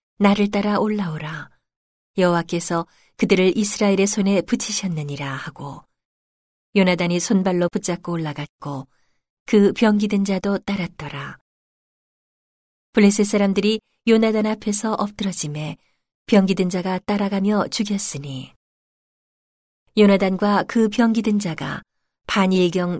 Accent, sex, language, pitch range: native, female, Korean, 165-210 Hz